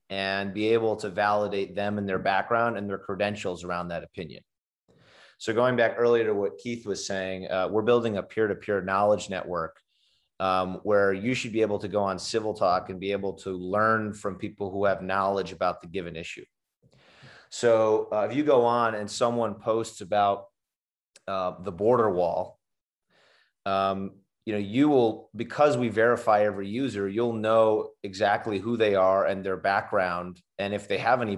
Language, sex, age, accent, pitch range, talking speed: English, male, 30-49, American, 95-115 Hz, 180 wpm